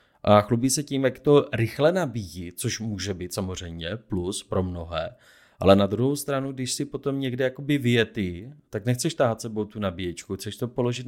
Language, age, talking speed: Czech, 30-49, 180 wpm